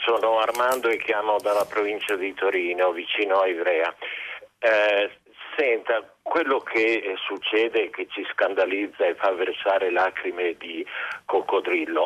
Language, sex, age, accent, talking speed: Italian, male, 50-69, native, 120 wpm